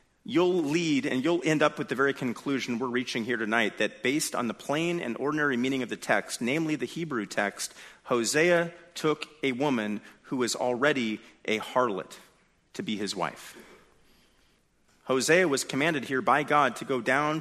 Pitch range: 120-165 Hz